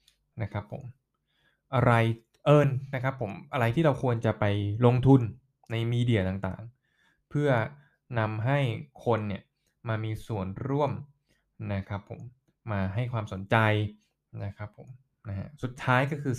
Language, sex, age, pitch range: Thai, male, 20-39, 105-135 Hz